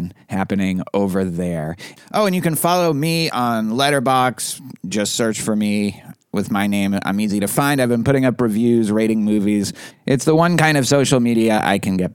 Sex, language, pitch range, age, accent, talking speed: male, English, 100-135 Hz, 30-49, American, 195 wpm